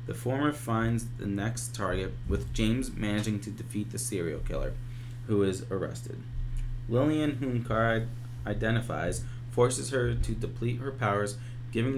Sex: male